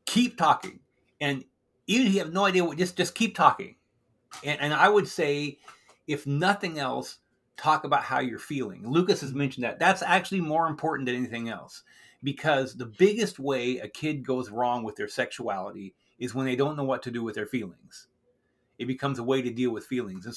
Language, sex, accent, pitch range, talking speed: English, male, American, 125-160 Hz, 205 wpm